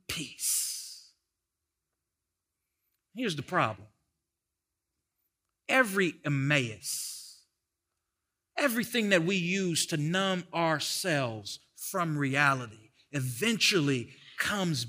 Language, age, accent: English, 40-59, American